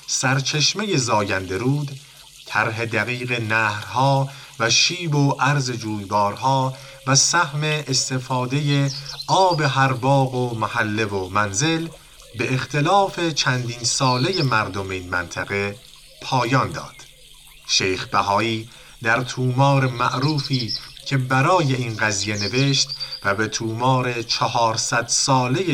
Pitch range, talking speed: 110-140 Hz, 105 wpm